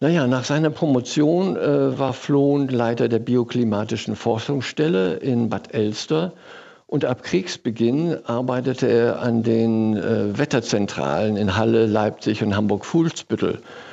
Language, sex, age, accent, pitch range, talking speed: German, male, 60-79, German, 115-145 Hz, 120 wpm